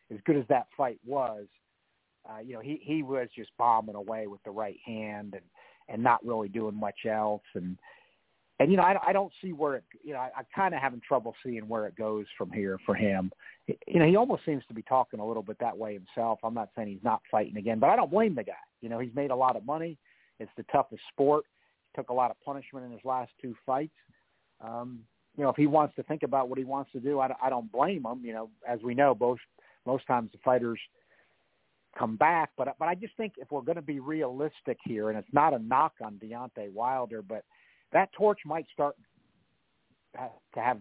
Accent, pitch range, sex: American, 110-140 Hz, male